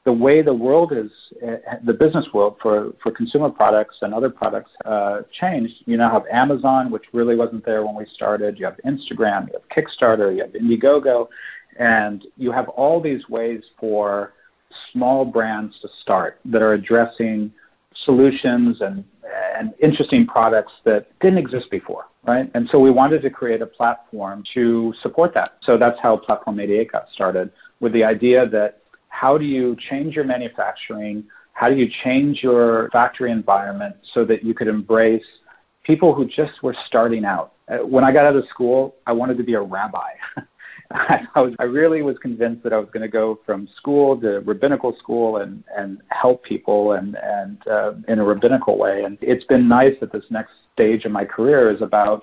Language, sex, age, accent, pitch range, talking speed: English, male, 50-69, American, 105-130 Hz, 185 wpm